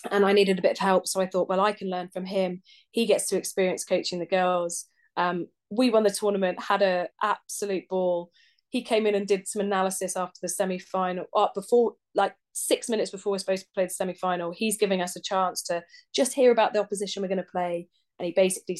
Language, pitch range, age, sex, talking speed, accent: English, 180-220 Hz, 20-39, female, 230 wpm, British